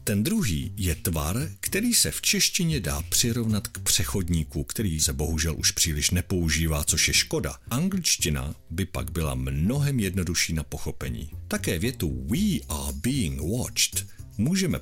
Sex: male